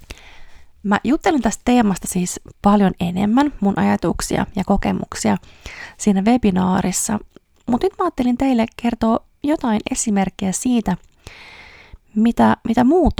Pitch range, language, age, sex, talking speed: 190-225 Hz, Finnish, 20-39, female, 115 wpm